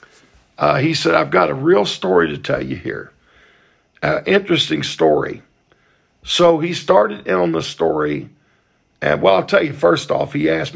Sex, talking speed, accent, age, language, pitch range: male, 175 wpm, American, 50-69, English, 135-175 Hz